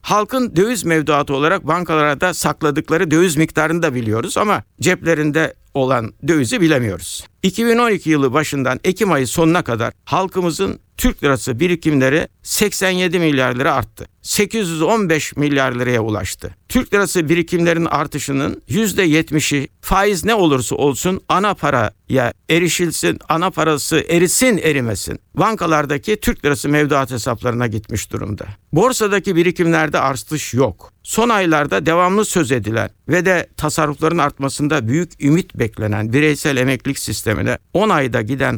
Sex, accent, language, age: male, native, Turkish, 60-79